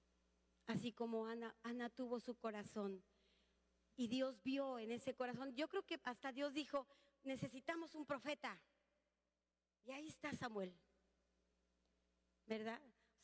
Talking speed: 125 wpm